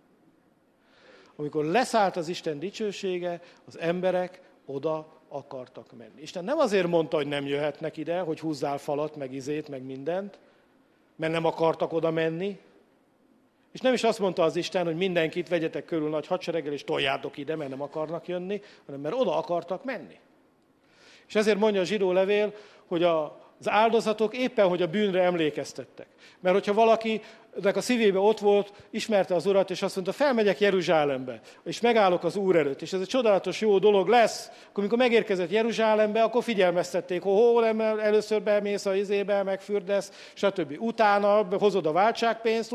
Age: 50-69